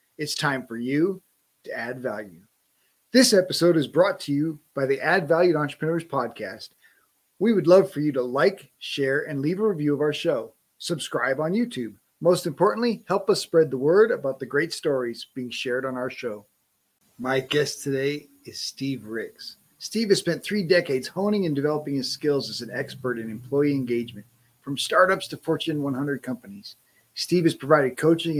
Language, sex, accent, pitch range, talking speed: English, male, American, 130-165 Hz, 180 wpm